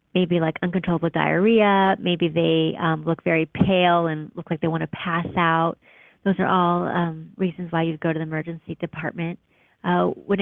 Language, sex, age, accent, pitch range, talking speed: English, female, 30-49, American, 165-195 Hz, 185 wpm